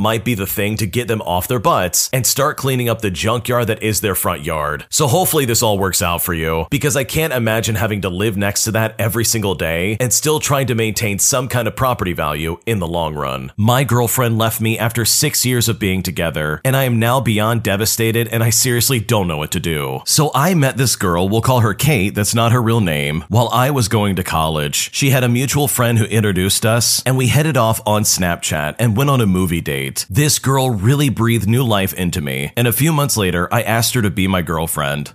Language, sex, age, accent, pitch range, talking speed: English, male, 40-59, American, 95-130 Hz, 240 wpm